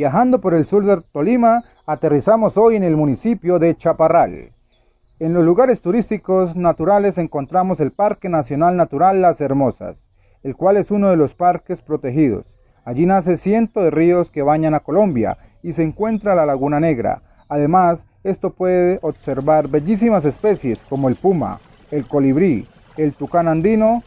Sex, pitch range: male, 145-195 Hz